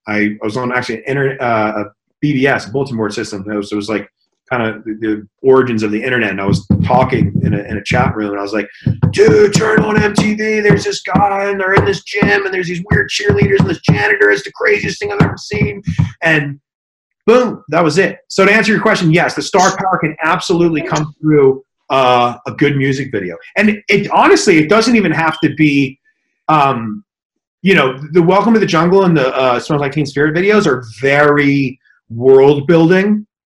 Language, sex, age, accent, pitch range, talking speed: English, male, 30-49, American, 130-180 Hz, 210 wpm